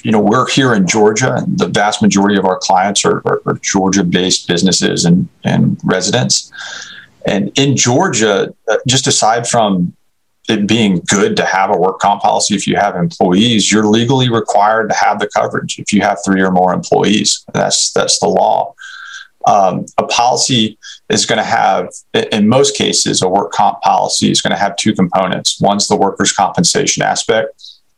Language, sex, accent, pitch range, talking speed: English, male, American, 95-110 Hz, 175 wpm